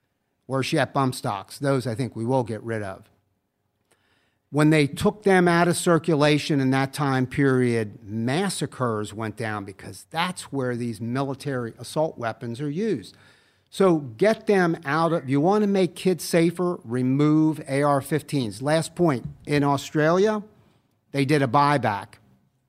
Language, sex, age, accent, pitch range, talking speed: English, male, 50-69, American, 125-150 Hz, 150 wpm